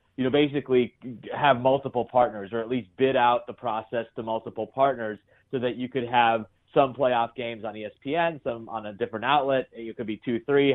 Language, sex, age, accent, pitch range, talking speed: English, male, 30-49, American, 115-130 Hz, 195 wpm